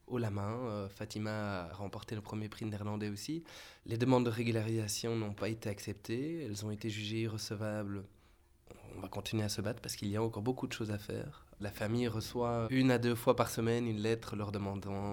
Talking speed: 215 wpm